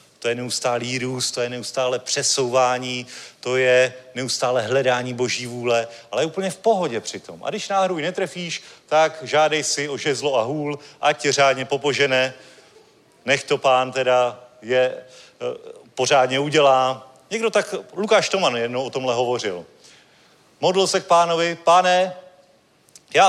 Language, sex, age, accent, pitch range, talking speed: Czech, male, 40-59, native, 130-170 Hz, 145 wpm